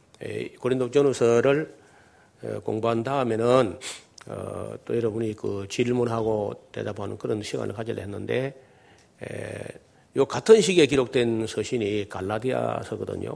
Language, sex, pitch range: Korean, male, 110-135 Hz